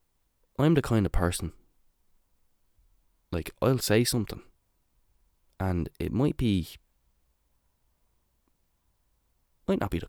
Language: English